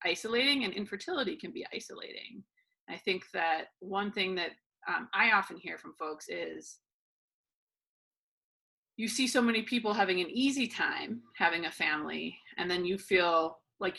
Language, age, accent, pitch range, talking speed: English, 30-49, American, 180-240 Hz, 155 wpm